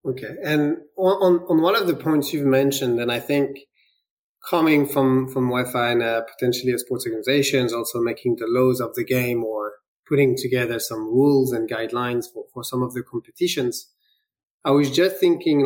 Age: 20-39